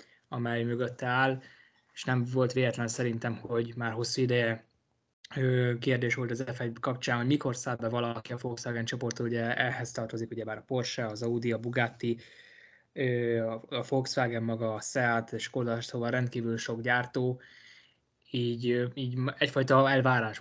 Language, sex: Hungarian, male